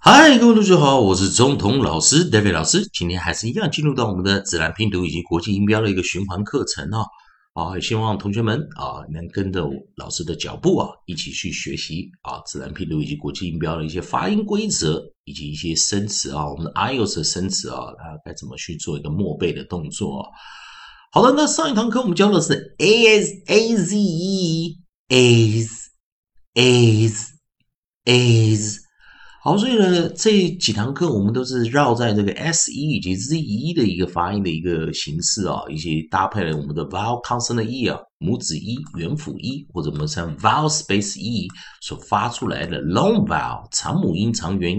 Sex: male